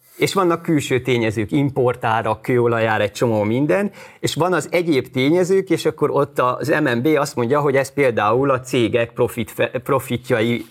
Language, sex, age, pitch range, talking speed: Hungarian, male, 30-49, 120-160 Hz, 150 wpm